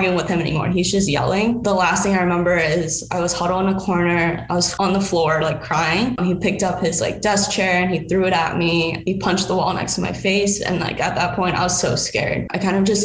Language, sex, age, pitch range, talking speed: English, female, 10-29, 170-200 Hz, 280 wpm